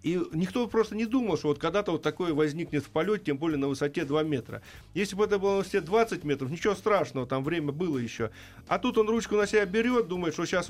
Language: Russian